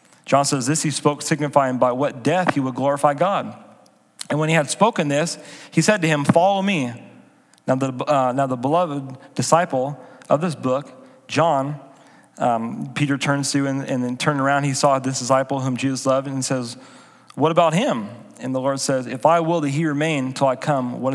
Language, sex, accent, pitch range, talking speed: English, male, American, 130-155 Hz, 205 wpm